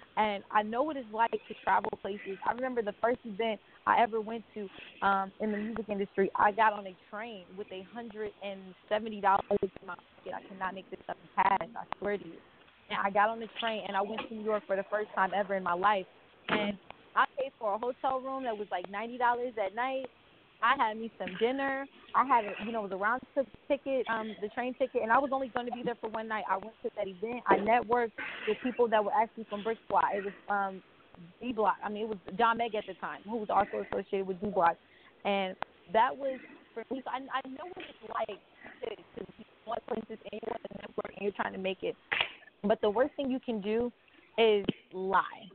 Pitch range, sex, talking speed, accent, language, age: 200-240 Hz, female, 225 wpm, American, English, 20-39